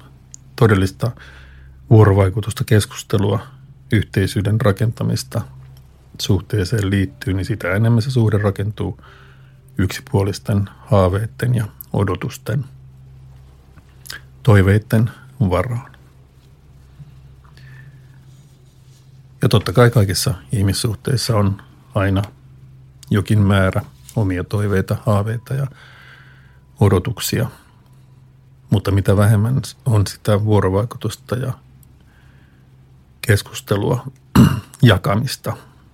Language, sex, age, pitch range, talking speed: Finnish, male, 50-69, 95-130 Hz, 70 wpm